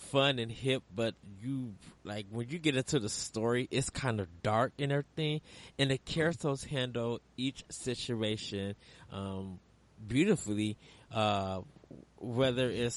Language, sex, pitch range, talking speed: English, male, 105-125 Hz, 135 wpm